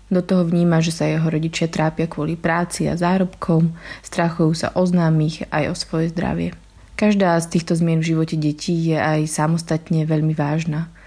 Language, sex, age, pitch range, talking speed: Slovak, female, 20-39, 160-180 Hz, 170 wpm